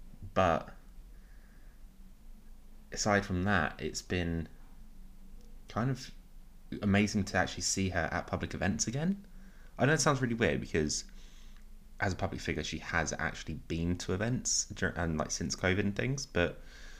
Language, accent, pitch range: English, British, 80-100 Hz